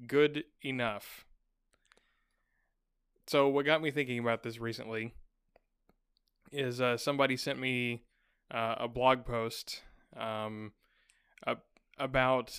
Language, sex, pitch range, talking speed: English, male, 115-140 Hz, 100 wpm